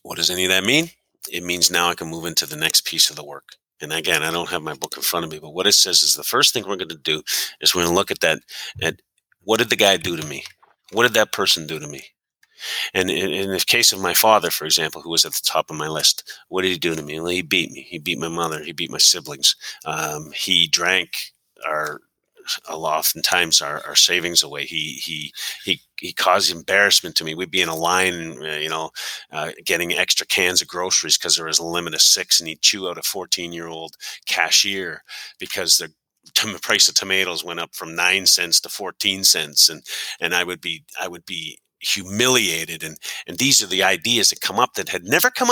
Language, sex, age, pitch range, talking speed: English, male, 40-59, 80-100 Hz, 240 wpm